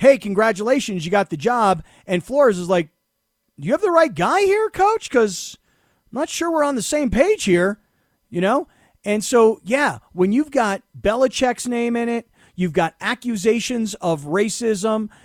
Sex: male